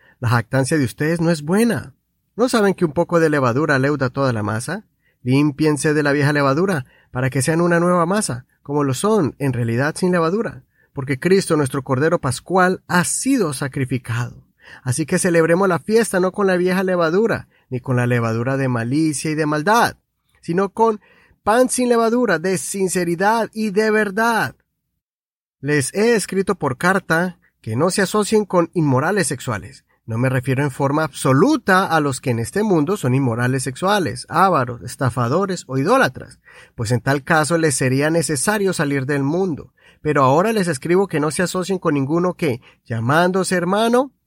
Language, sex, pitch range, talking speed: Spanish, male, 135-185 Hz, 170 wpm